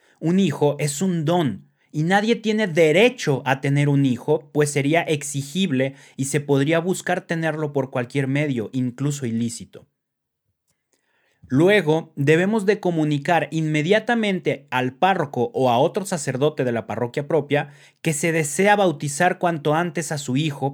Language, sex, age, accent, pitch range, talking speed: Spanish, male, 30-49, Mexican, 135-170 Hz, 145 wpm